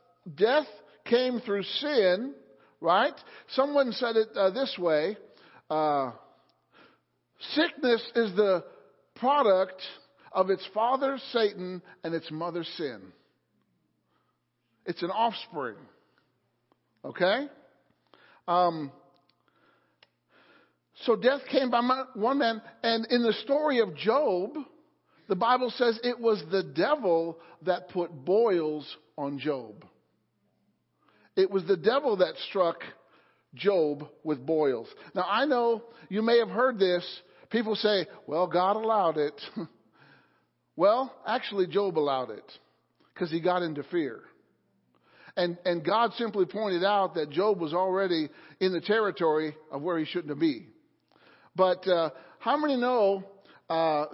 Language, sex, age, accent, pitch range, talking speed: English, male, 50-69, American, 170-235 Hz, 125 wpm